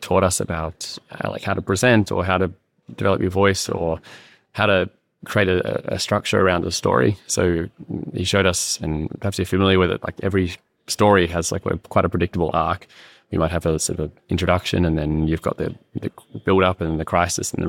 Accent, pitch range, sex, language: Australian, 80-95 Hz, male, English